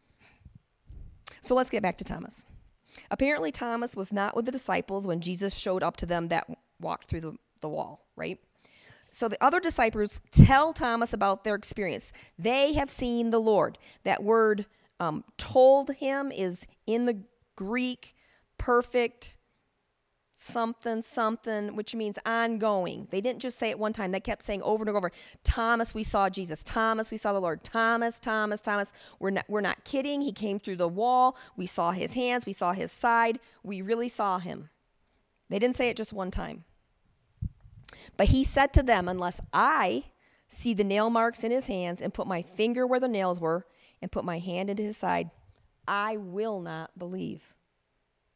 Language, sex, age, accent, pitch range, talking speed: English, female, 40-59, American, 190-235 Hz, 175 wpm